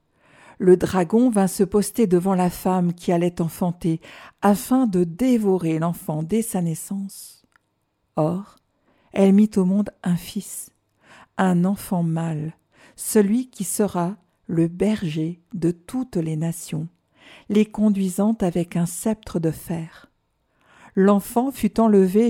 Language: French